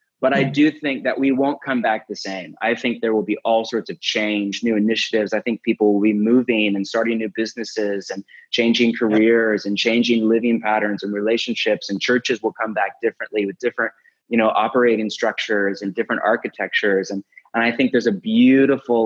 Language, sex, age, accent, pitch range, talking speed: English, male, 20-39, American, 105-120 Hz, 200 wpm